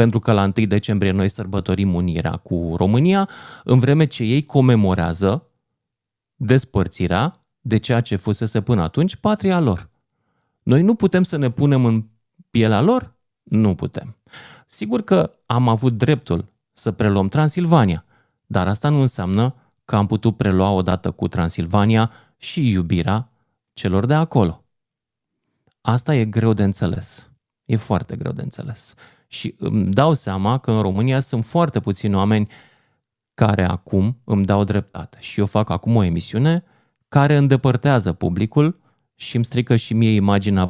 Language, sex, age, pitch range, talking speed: Romanian, male, 30-49, 100-130 Hz, 145 wpm